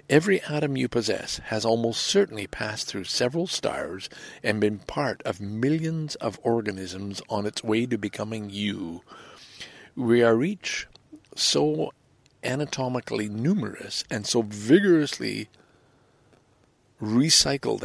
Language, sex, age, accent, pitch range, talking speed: English, male, 60-79, American, 105-140 Hz, 115 wpm